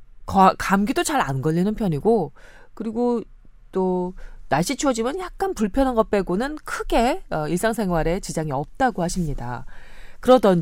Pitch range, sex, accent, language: 165-270 Hz, female, native, Korean